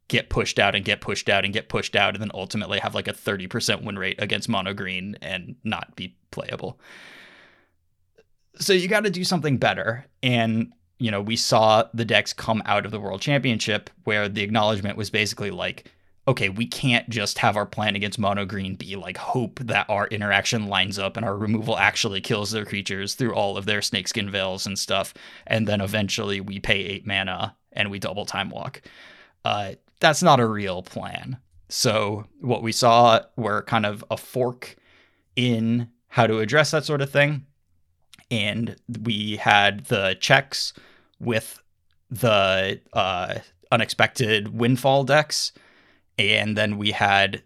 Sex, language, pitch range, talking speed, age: male, English, 100-120 Hz, 170 wpm, 20-39